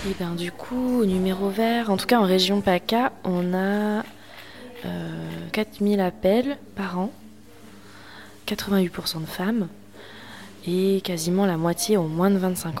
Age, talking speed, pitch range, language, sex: 20-39, 140 wpm, 160-195 Hz, French, female